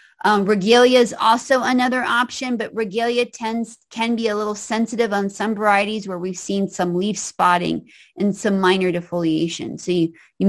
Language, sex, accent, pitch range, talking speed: English, female, American, 195-245 Hz, 165 wpm